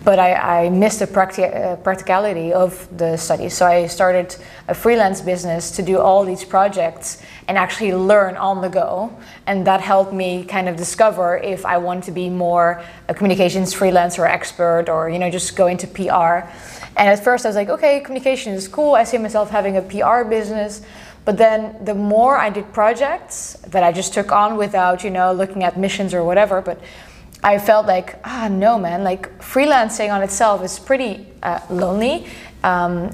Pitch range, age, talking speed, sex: 180-210 Hz, 20-39, 190 wpm, female